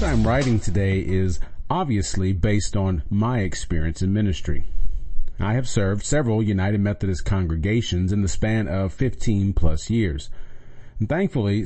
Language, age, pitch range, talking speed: English, 40-59, 90-115 Hz, 140 wpm